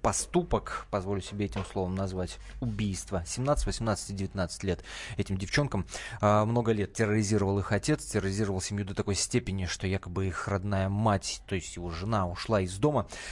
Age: 20-39